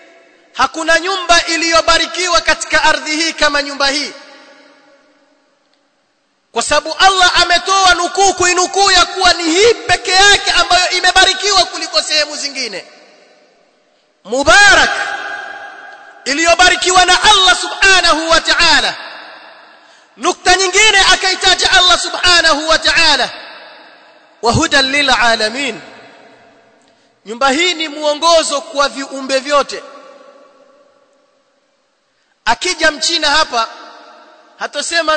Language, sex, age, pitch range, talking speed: Swahili, male, 30-49, 280-370 Hz, 90 wpm